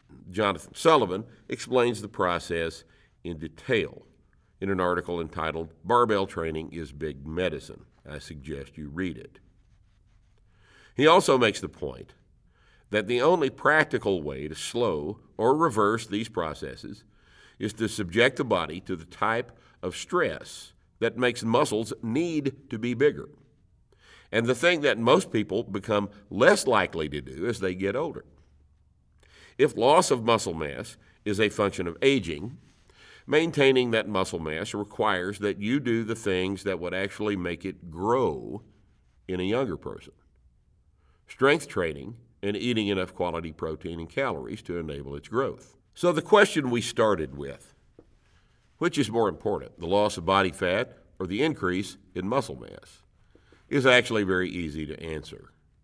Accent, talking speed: American, 150 wpm